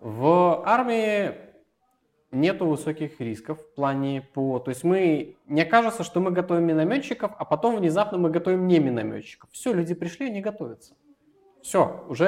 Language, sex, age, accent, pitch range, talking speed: Russian, male, 20-39, native, 115-175 Hz, 150 wpm